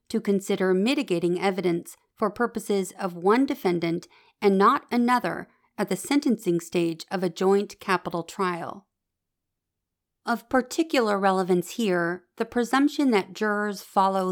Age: 40-59